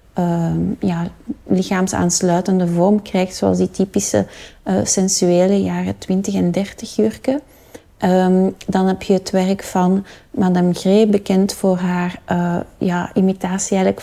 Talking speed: 135 wpm